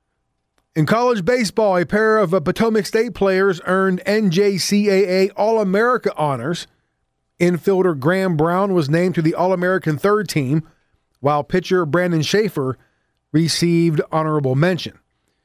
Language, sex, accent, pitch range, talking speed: English, male, American, 145-200 Hz, 115 wpm